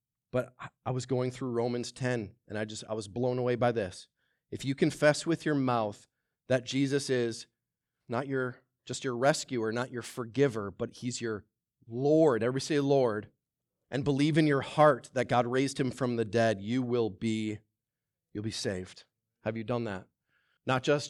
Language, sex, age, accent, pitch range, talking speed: English, male, 30-49, American, 115-145 Hz, 180 wpm